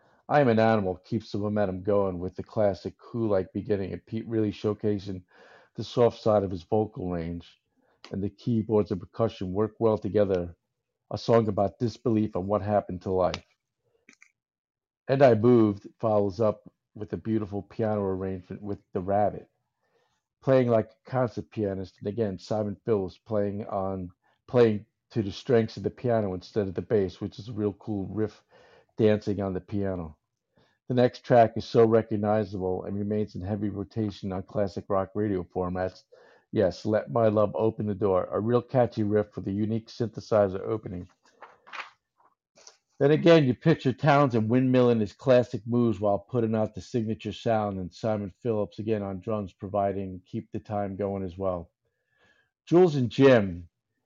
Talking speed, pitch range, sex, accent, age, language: 170 wpm, 95-115 Hz, male, American, 50-69, English